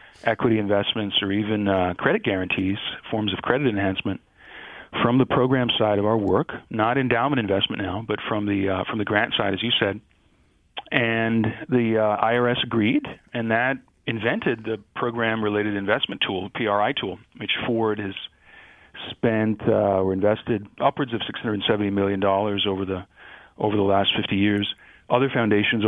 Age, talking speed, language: 40-59, 160 wpm, English